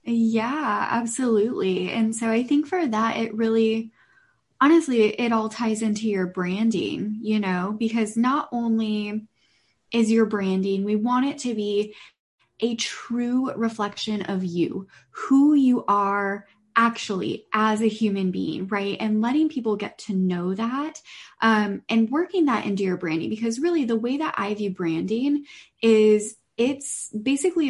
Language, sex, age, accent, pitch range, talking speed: English, female, 10-29, American, 200-245 Hz, 150 wpm